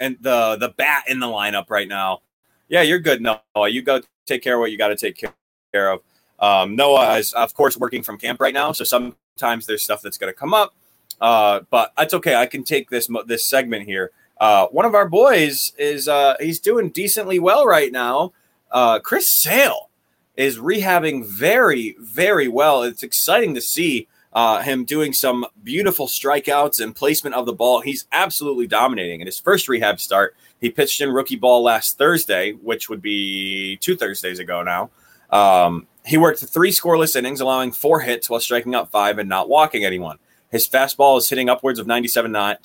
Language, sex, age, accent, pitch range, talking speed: English, male, 20-39, American, 115-155 Hz, 190 wpm